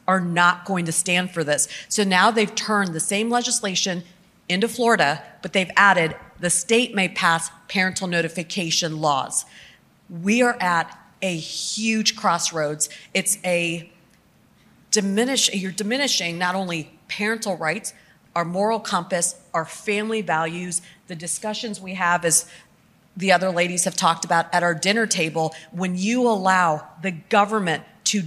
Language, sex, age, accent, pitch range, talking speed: English, female, 40-59, American, 170-205 Hz, 145 wpm